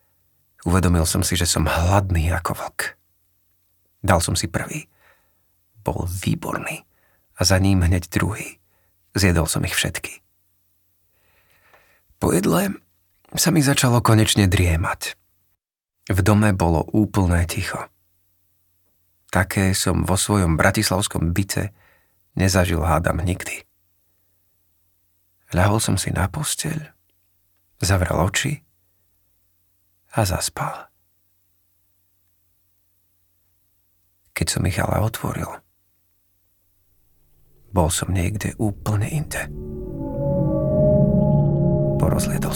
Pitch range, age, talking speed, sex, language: 75-95 Hz, 40-59, 90 wpm, male, Slovak